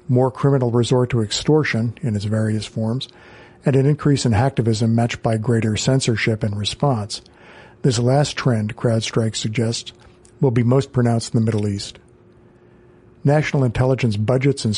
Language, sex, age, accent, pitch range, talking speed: English, male, 50-69, American, 115-130 Hz, 150 wpm